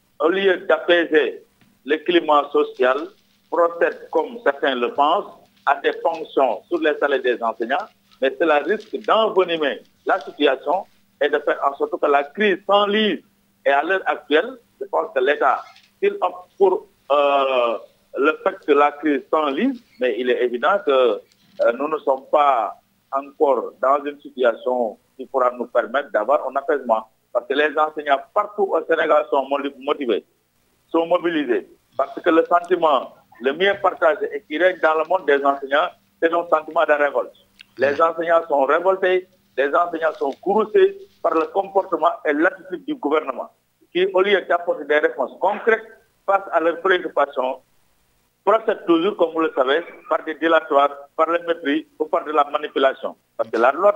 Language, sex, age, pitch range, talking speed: French, male, 50-69, 145-200 Hz, 165 wpm